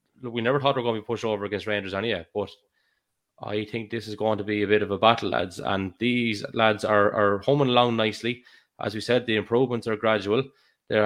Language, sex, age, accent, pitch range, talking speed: English, male, 20-39, Irish, 105-125 Hz, 240 wpm